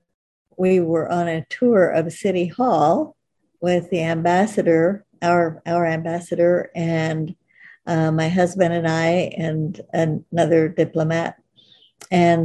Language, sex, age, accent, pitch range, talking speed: English, female, 60-79, American, 165-180 Hz, 120 wpm